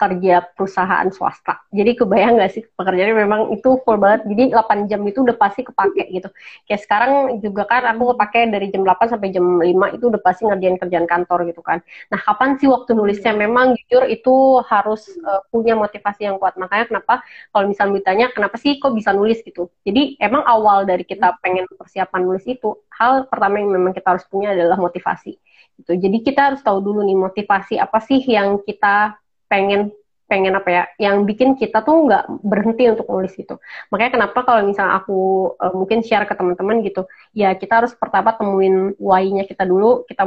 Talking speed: 190 wpm